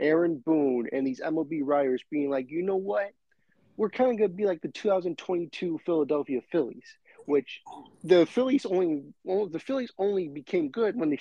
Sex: male